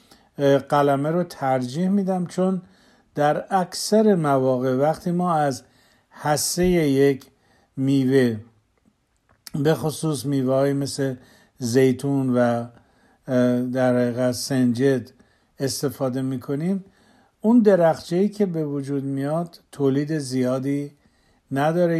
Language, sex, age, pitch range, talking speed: Persian, male, 50-69, 135-180 Hz, 95 wpm